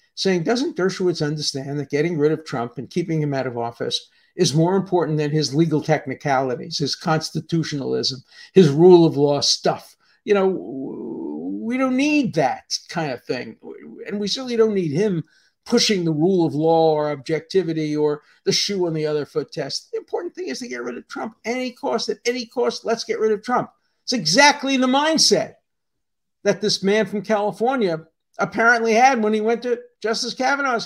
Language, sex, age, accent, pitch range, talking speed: English, male, 50-69, American, 155-225 Hz, 185 wpm